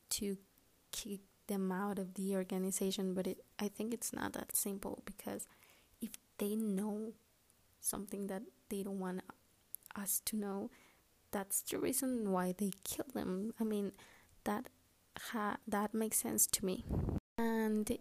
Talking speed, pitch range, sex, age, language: 145 wpm, 195-220 Hz, female, 20-39, English